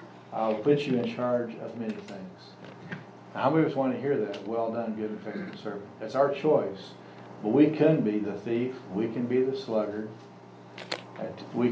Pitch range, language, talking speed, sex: 105-130 Hz, English, 200 wpm, male